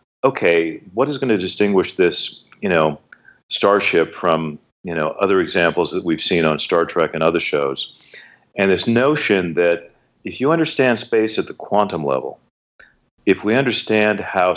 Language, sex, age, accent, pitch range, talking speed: English, male, 40-59, American, 80-100 Hz, 165 wpm